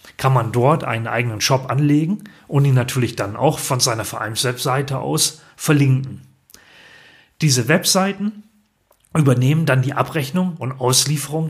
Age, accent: 40-59, German